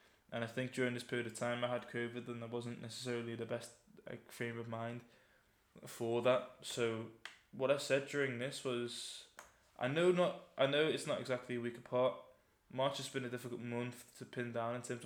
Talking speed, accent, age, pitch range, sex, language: 205 wpm, British, 10-29, 120-130 Hz, male, English